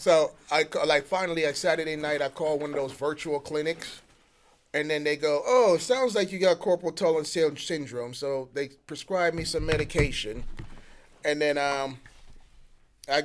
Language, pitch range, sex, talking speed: English, 140-165 Hz, male, 170 wpm